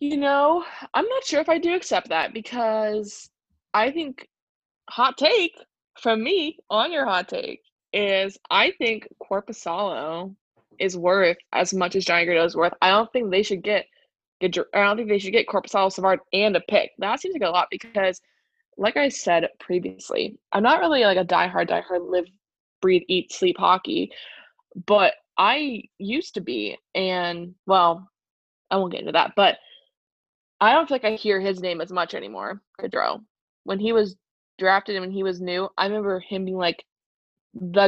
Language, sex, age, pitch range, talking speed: English, female, 20-39, 180-225 Hz, 175 wpm